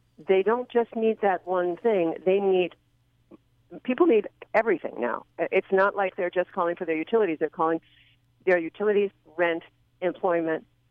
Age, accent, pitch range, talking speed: 50-69, American, 140-180 Hz, 155 wpm